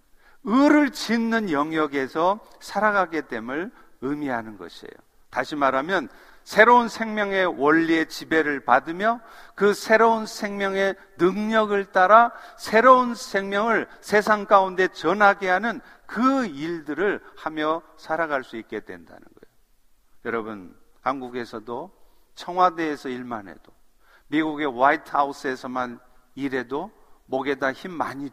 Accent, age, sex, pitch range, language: native, 50-69, male, 145-220 Hz, Korean